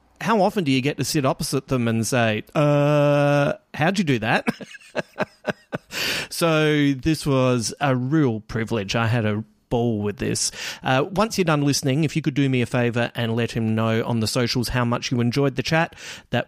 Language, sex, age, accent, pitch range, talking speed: English, male, 30-49, Australian, 115-140 Hz, 195 wpm